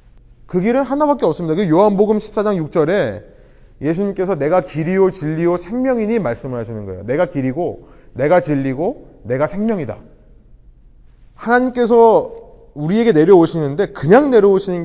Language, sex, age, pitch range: Korean, male, 30-49, 135-220 Hz